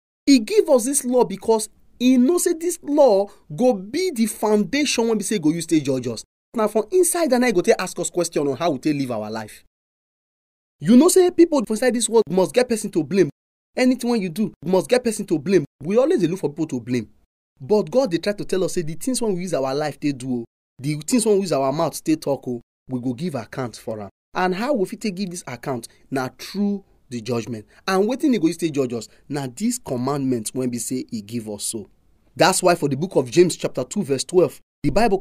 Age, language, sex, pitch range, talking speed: 30-49, English, male, 135-225 Hz, 240 wpm